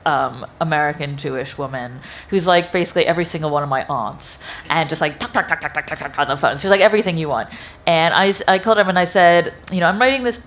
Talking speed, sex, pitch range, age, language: 240 wpm, female, 155-215 Hz, 30-49, English